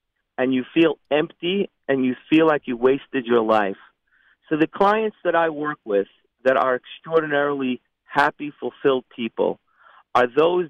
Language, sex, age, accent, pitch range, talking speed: English, male, 50-69, American, 125-155 Hz, 150 wpm